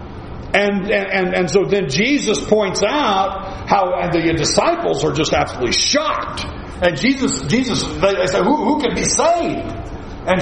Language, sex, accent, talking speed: English, male, American, 160 wpm